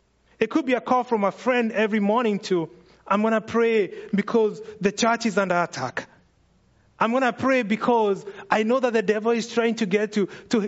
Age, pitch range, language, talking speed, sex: 30-49, 180-235 Hz, English, 210 wpm, male